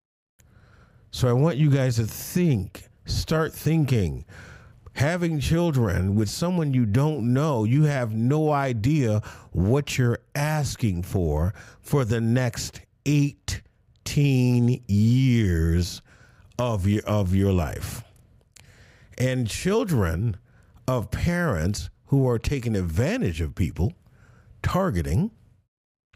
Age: 50-69